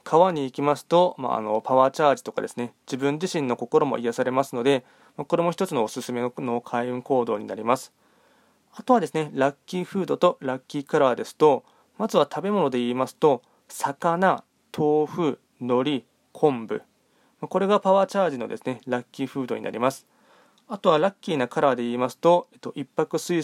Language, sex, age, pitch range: Japanese, male, 20-39, 125-160 Hz